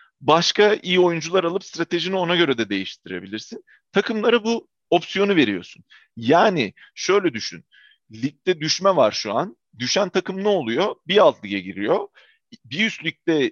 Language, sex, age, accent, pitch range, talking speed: Turkish, male, 40-59, native, 135-190 Hz, 140 wpm